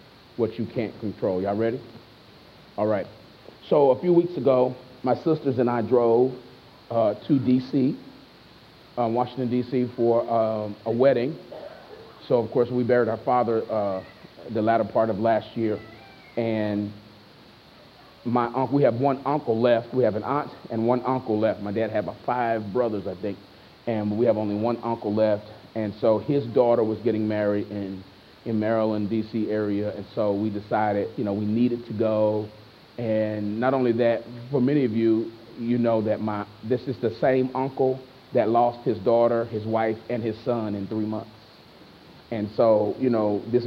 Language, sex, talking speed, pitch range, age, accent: English, male, 175 wpm, 110-125 Hz, 40-59, American